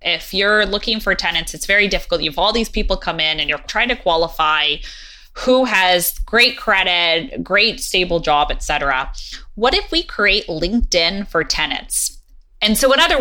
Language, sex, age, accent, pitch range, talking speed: English, female, 20-39, American, 165-225 Hz, 180 wpm